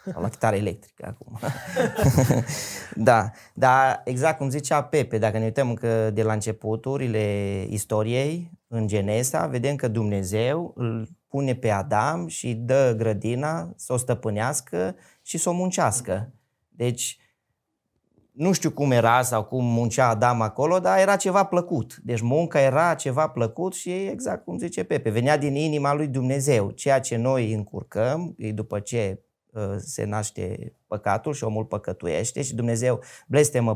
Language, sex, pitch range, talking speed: Romanian, male, 110-140 Hz, 145 wpm